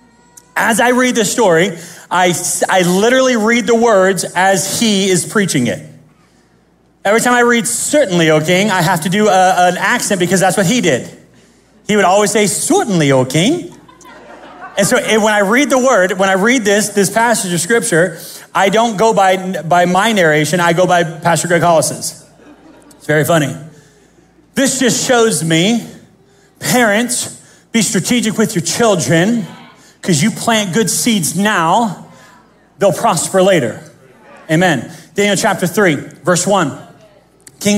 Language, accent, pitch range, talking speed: English, American, 165-210 Hz, 160 wpm